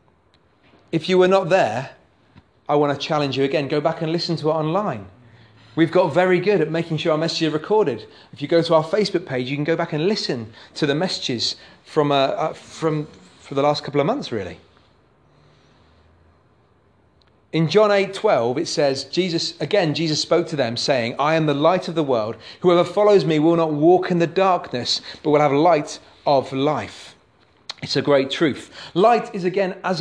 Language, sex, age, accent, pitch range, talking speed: English, male, 30-49, British, 135-190 Hz, 200 wpm